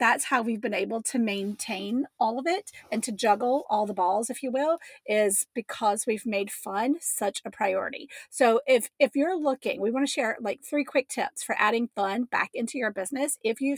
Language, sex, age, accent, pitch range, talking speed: English, female, 30-49, American, 220-285 Hz, 215 wpm